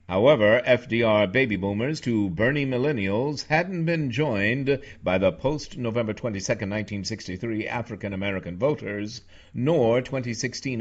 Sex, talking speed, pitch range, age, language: male, 105 wpm, 95-130 Hz, 60-79, English